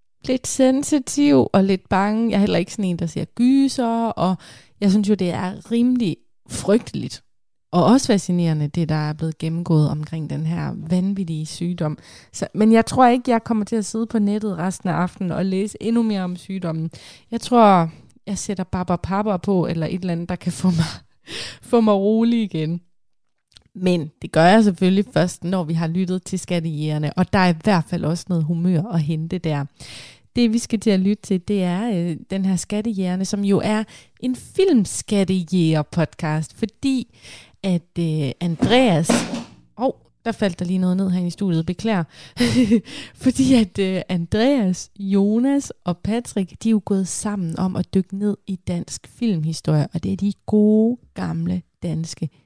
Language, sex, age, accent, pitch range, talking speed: Danish, female, 20-39, native, 170-215 Hz, 180 wpm